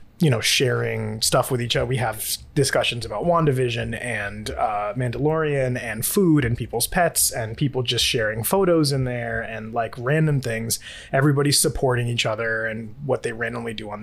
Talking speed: 175 wpm